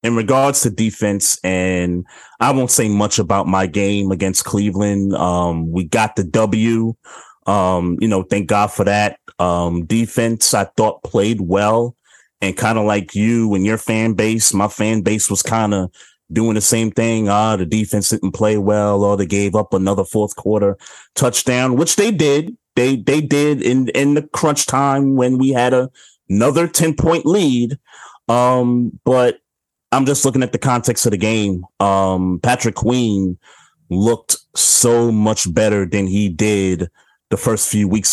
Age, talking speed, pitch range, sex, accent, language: 30-49, 170 wpm, 95-120 Hz, male, American, English